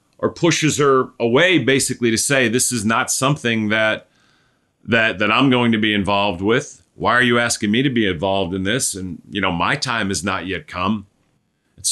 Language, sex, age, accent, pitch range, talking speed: English, male, 40-59, American, 100-130 Hz, 200 wpm